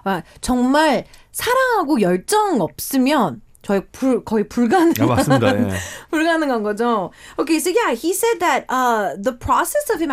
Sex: female